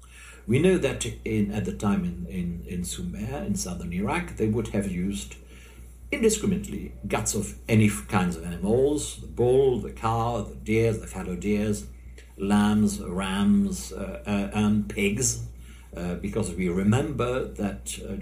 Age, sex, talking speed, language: 60-79, male, 155 wpm, English